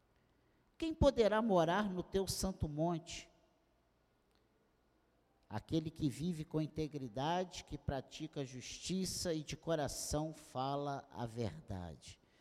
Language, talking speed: Portuguese, 100 wpm